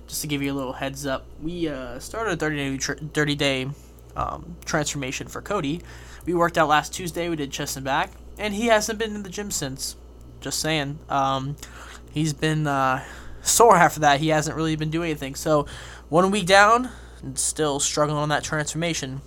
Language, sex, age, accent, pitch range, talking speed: English, male, 20-39, American, 130-155 Hz, 200 wpm